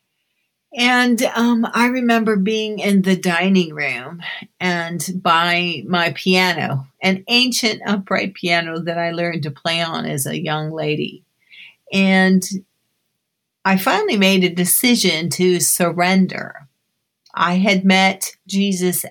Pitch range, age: 170-210 Hz, 50-69